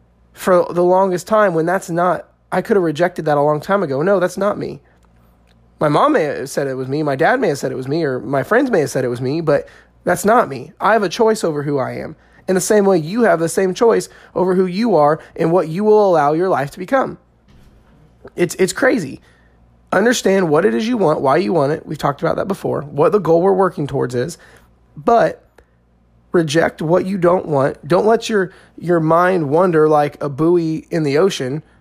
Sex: male